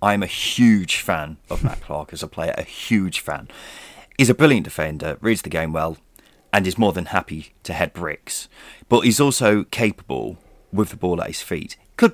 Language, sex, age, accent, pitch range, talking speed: English, male, 30-49, British, 85-115 Hz, 200 wpm